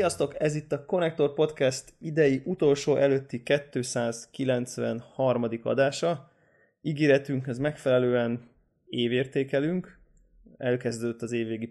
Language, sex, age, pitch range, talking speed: Hungarian, male, 20-39, 120-140 Hz, 90 wpm